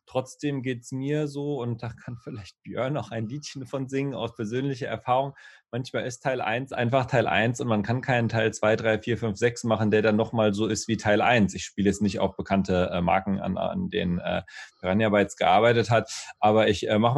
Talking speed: 215 wpm